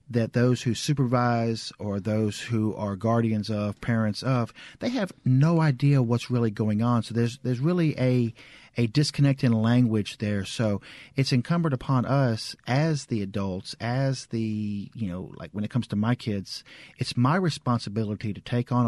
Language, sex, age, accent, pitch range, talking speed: English, male, 40-59, American, 110-140 Hz, 175 wpm